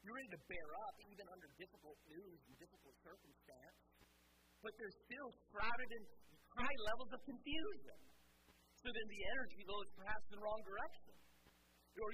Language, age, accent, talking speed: English, 40-59, American, 165 wpm